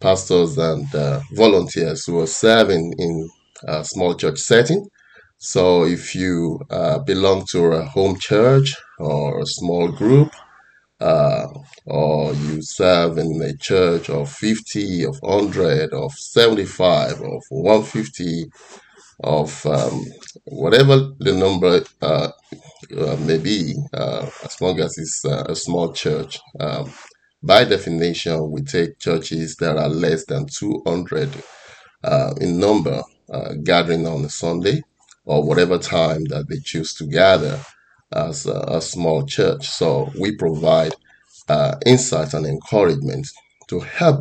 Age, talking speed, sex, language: 30-49, 135 wpm, male, English